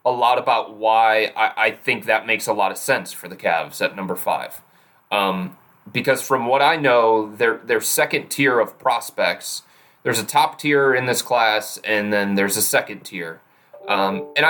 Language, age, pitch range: English, 30-49, 100-130 Hz